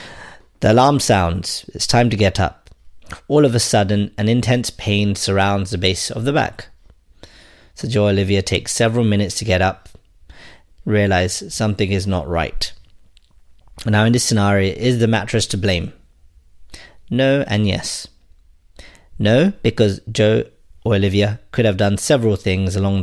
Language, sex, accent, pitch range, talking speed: English, male, British, 95-110 Hz, 155 wpm